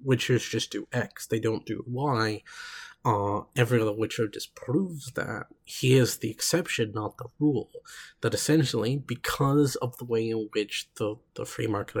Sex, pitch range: male, 110-130 Hz